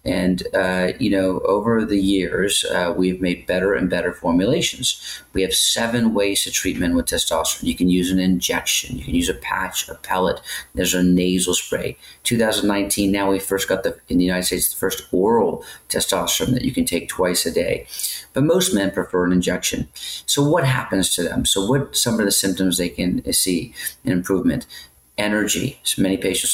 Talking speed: 195 wpm